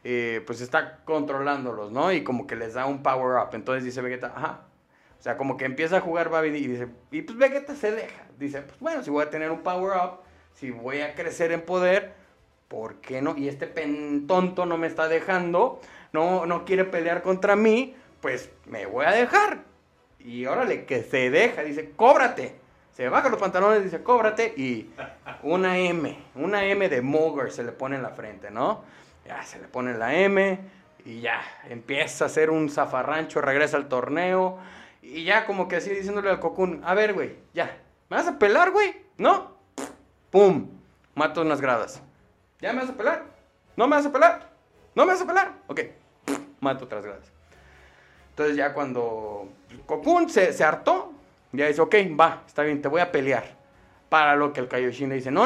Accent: Mexican